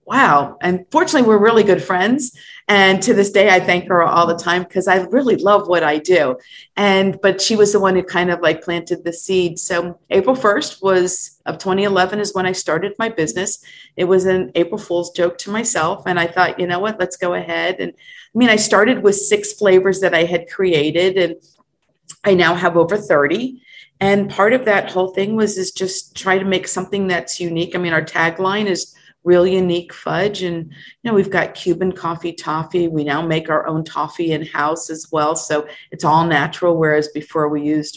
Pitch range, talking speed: 165-195 Hz, 210 wpm